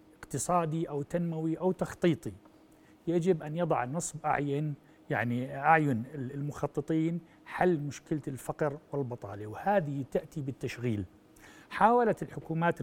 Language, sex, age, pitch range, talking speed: Arabic, male, 60-79, 150-180 Hz, 105 wpm